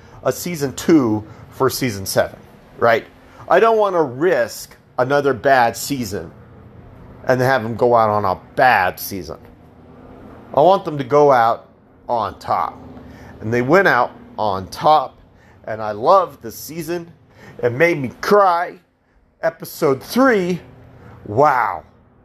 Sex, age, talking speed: male, 40-59, 135 wpm